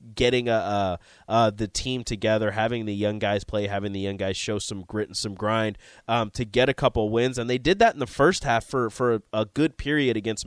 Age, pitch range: 20-39, 105-130 Hz